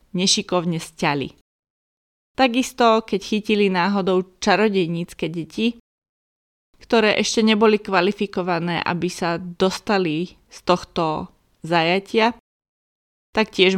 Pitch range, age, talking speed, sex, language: 175-210 Hz, 20-39, 85 wpm, female, Slovak